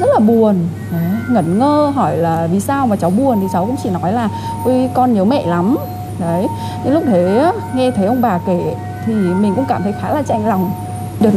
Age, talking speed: 20-39, 220 wpm